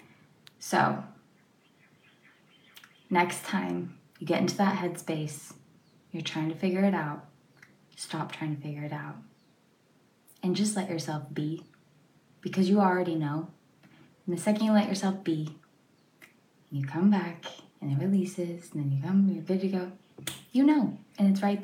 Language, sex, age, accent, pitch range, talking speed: English, female, 20-39, American, 160-195 Hz, 155 wpm